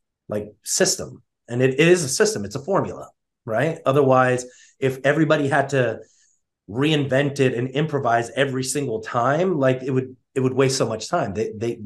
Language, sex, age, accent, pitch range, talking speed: English, male, 30-49, American, 120-145 Hz, 170 wpm